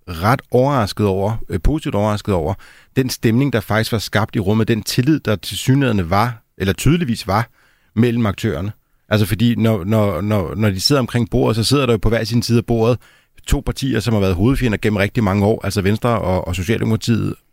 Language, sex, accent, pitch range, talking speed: Danish, male, native, 105-125 Hz, 210 wpm